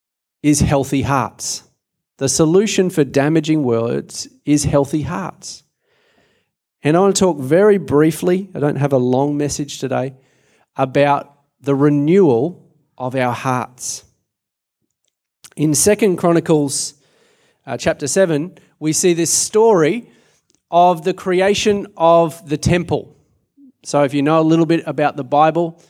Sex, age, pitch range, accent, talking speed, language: male, 30-49, 140-170 Hz, Australian, 130 wpm, English